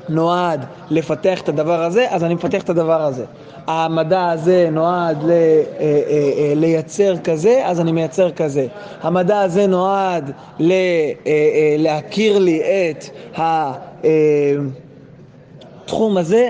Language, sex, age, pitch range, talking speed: English, male, 20-39, 155-195 Hz, 105 wpm